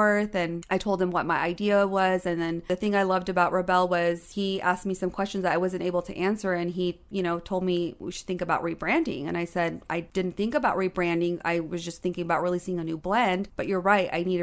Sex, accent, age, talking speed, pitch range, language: female, American, 30-49, 255 wpm, 175-195 Hz, English